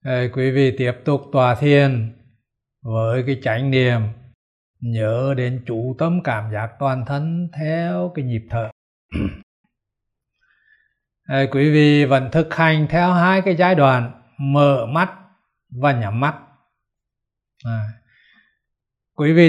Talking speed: 130 wpm